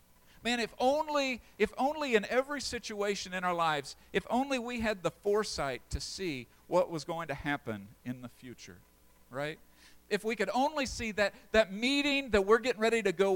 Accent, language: American, English